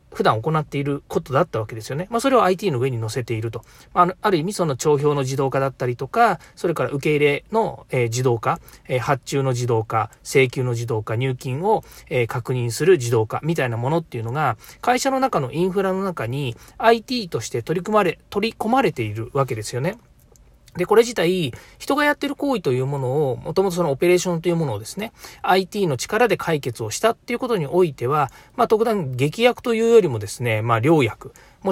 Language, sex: Japanese, male